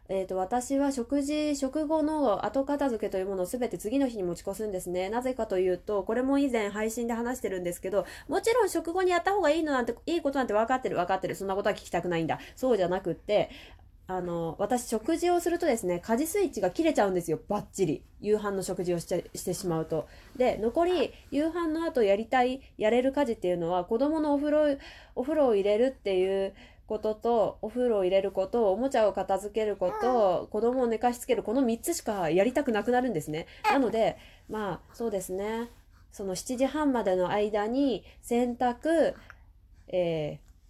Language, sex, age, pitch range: Japanese, female, 20-39, 190-285 Hz